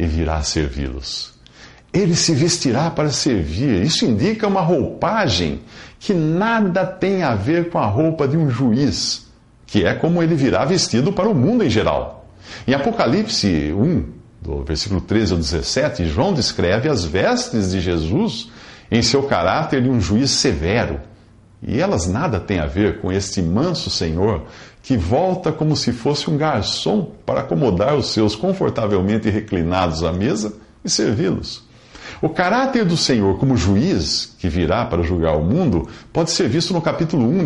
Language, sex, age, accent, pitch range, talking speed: English, male, 50-69, Brazilian, 90-145 Hz, 160 wpm